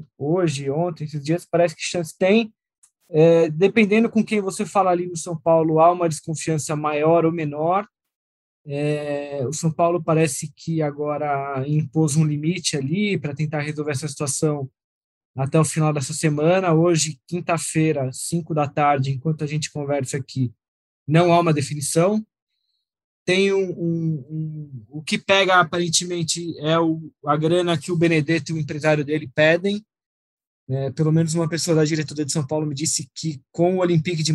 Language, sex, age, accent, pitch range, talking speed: Portuguese, male, 20-39, Brazilian, 145-170 Hz, 170 wpm